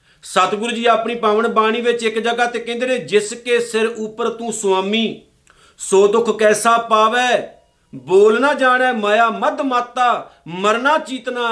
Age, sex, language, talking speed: 50-69, male, Punjabi, 150 wpm